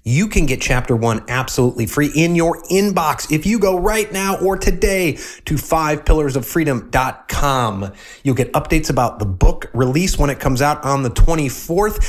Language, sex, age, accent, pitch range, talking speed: English, male, 30-49, American, 115-150 Hz, 165 wpm